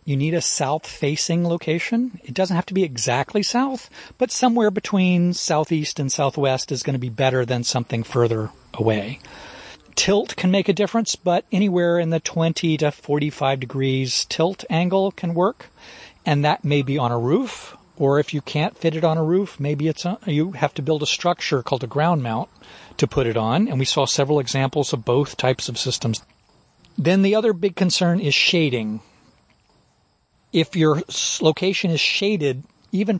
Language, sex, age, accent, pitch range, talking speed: English, male, 40-59, American, 135-180 Hz, 185 wpm